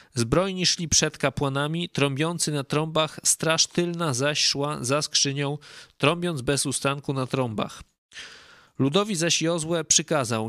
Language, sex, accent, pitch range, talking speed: Polish, male, native, 135-165 Hz, 125 wpm